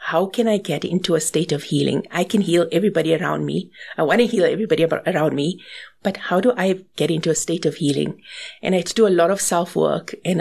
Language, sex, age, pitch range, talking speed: English, female, 50-69, 160-195 Hz, 240 wpm